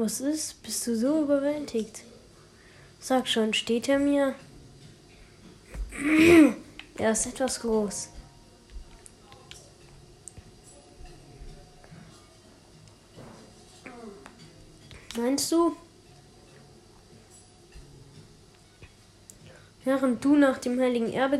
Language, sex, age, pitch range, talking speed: German, female, 20-39, 225-260 Hz, 65 wpm